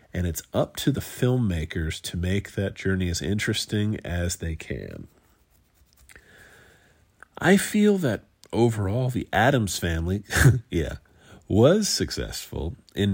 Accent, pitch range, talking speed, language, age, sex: American, 85-110 Hz, 120 wpm, English, 40-59, male